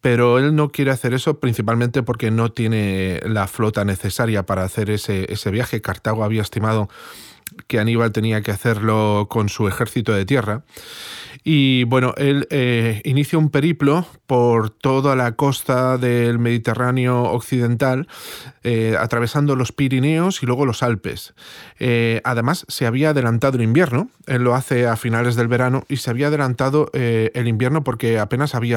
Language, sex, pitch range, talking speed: Spanish, male, 115-140 Hz, 160 wpm